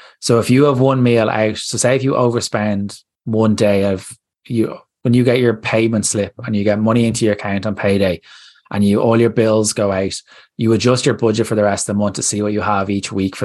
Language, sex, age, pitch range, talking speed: English, male, 20-39, 100-120 Hz, 250 wpm